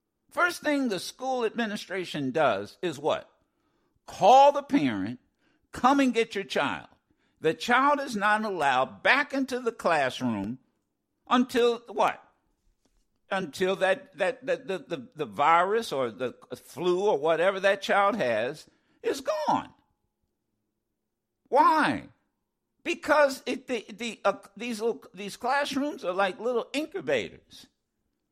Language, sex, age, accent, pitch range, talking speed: English, male, 60-79, American, 185-275 Hz, 125 wpm